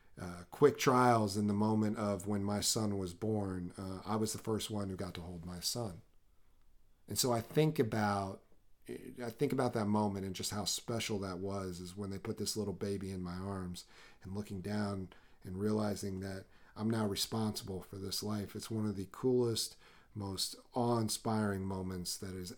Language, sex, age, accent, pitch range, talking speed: English, male, 40-59, American, 90-110 Hz, 185 wpm